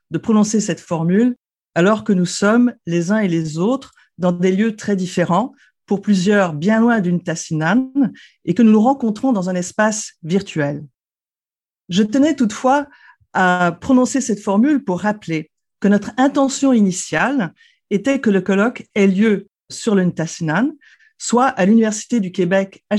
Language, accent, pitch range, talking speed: French, French, 175-235 Hz, 160 wpm